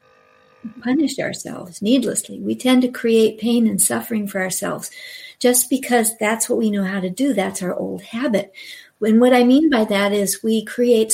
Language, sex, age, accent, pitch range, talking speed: English, female, 50-69, American, 200-275 Hz, 185 wpm